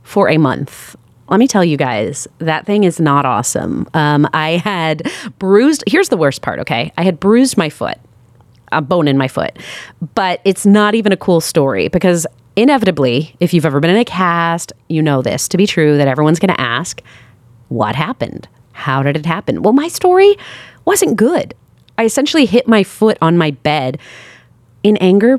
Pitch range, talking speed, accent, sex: 140-210 Hz, 190 wpm, American, female